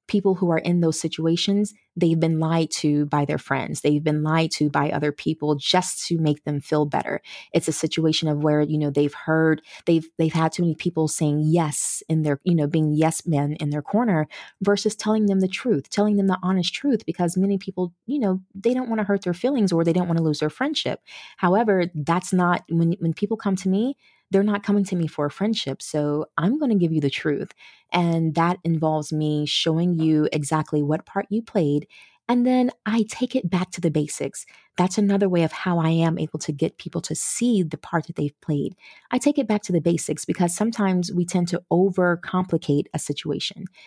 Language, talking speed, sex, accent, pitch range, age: English, 220 wpm, female, American, 155-195 Hz, 20-39